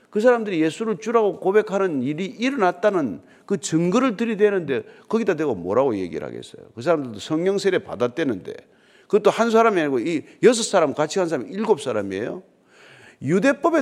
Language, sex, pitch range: Korean, male, 155-250 Hz